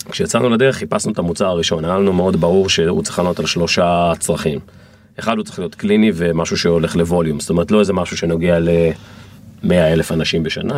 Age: 40-59